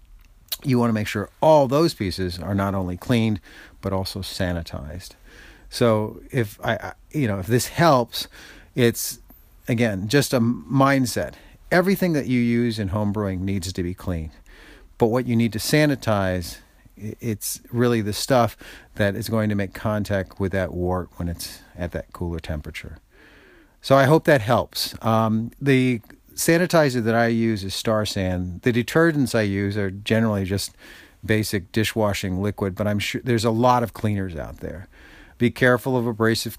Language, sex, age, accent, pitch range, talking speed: English, male, 40-59, American, 95-115 Hz, 165 wpm